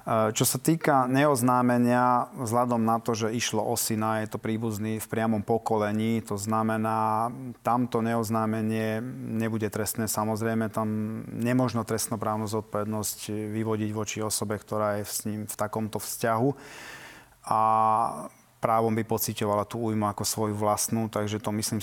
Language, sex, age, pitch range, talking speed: Slovak, male, 30-49, 110-120 Hz, 135 wpm